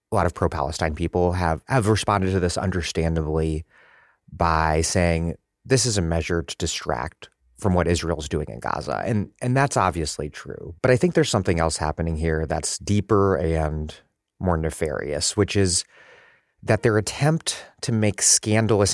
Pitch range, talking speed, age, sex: 85-110 Hz, 170 wpm, 30-49, male